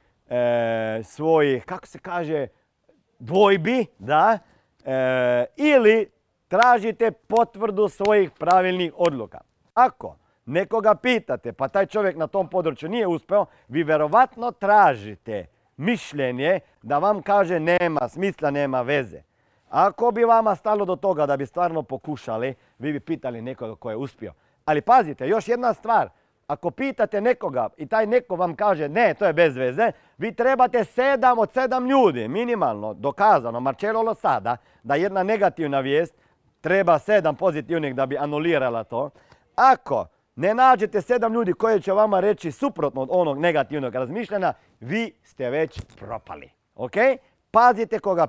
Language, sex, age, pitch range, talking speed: Croatian, male, 40-59, 135-215 Hz, 140 wpm